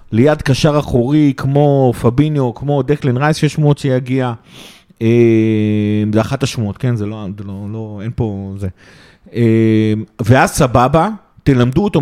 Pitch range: 115-155 Hz